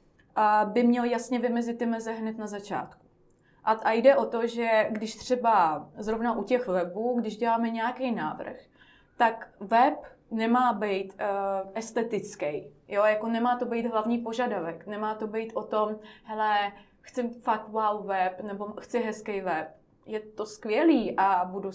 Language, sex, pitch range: Czech, female, 200-225 Hz